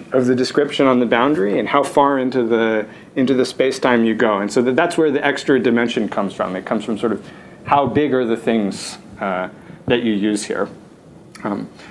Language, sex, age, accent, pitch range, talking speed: English, male, 30-49, American, 120-155 Hz, 210 wpm